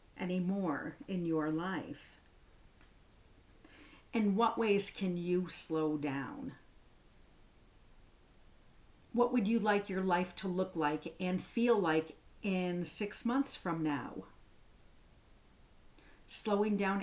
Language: English